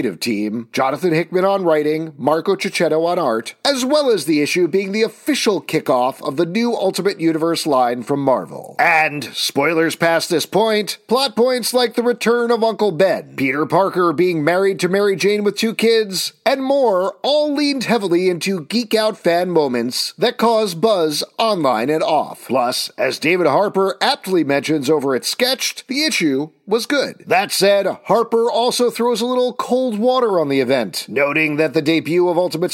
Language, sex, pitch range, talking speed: English, male, 160-225 Hz, 175 wpm